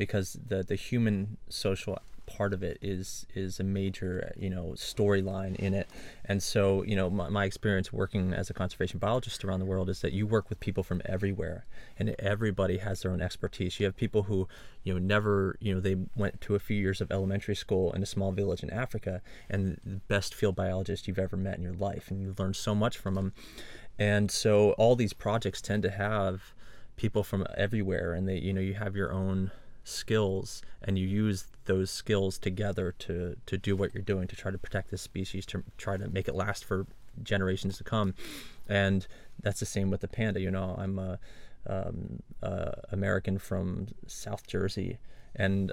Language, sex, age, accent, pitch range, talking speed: English, male, 30-49, American, 95-105 Hz, 200 wpm